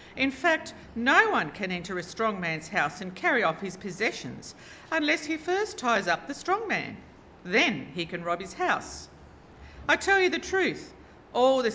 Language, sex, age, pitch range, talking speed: English, female, 50-69, 180-260 Hz, 185 wpm